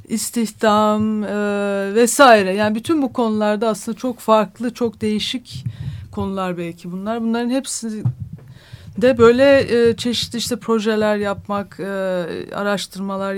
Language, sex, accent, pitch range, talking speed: Turkish, female, native, 195-230 Hz, 110 wpm